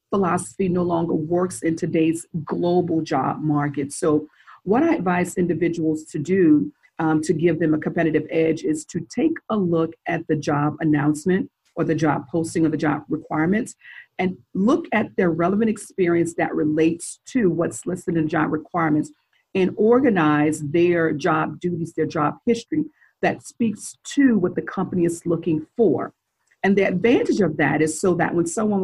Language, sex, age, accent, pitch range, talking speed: English, female, 40-59, American, 160-195 Hz, 170 wpm